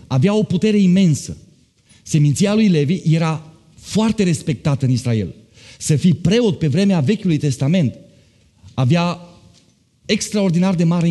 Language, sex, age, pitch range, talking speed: Romanian, male, 30-49, 140-200 Hz, 125 wpm